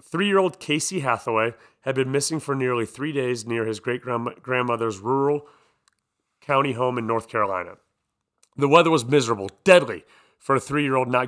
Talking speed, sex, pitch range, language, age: 150 wpm, male, 120-140 Hz, English, 30-49